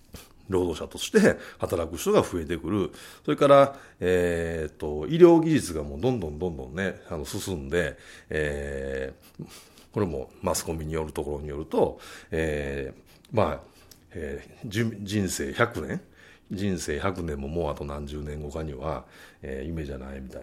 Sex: male